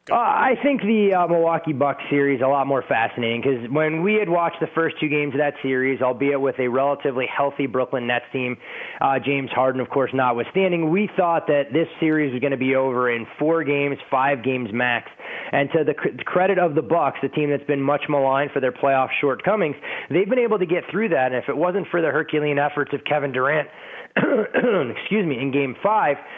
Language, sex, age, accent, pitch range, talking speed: English, male, 20-39, American, 130-160 Hz, 220 wpm